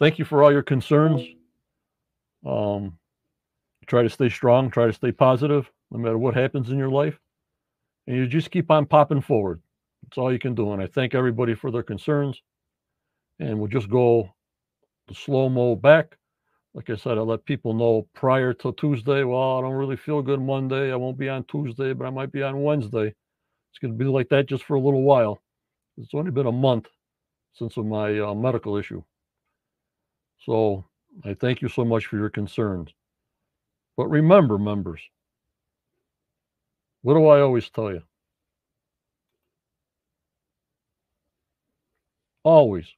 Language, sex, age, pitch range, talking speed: English, male, 60-79, 110-145 Hz, 160 wpm